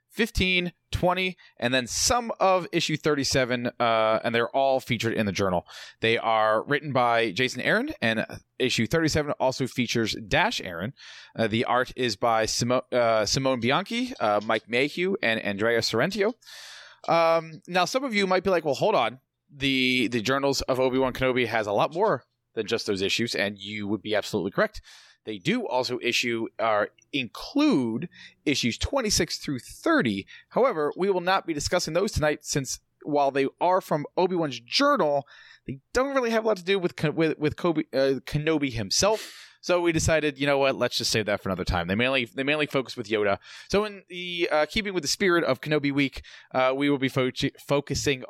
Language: English